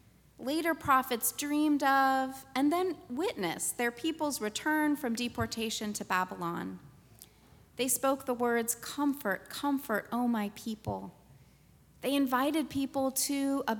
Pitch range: 210-275 Hz